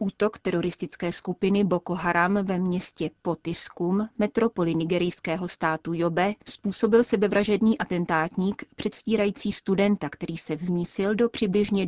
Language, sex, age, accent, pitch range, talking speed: Czech, female, 30-49, native, 170-205 Hz, 110 wpm